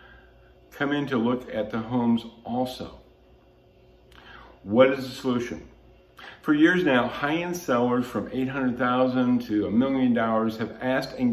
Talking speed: 145 wpm